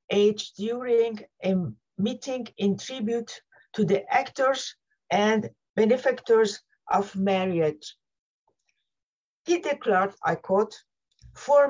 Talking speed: 90 wpm